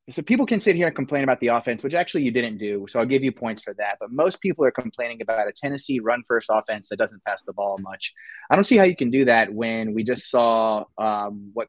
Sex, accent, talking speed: male, American, 270 wpm